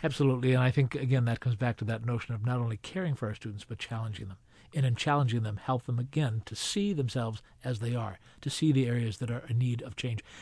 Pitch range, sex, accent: 115-150 Hz, male, American